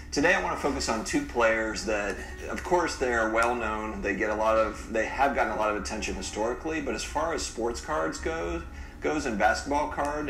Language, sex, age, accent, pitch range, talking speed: English, male, 30-49, American, 95-115 Hz, 220 wpm